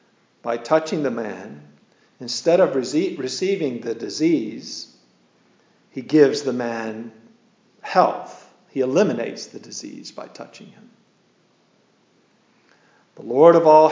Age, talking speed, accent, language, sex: 50-69, 110 wpm, American, English, male